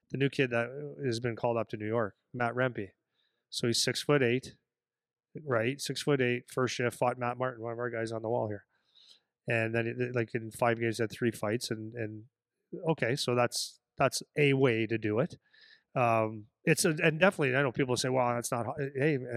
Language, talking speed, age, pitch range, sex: English, 215 wpm, 30-49, 115-135 Hz, male